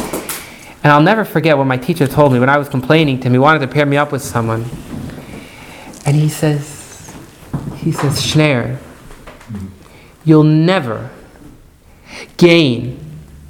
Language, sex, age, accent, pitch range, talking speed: English, male, 30-49, American, 135-200 Hz, 140 wpm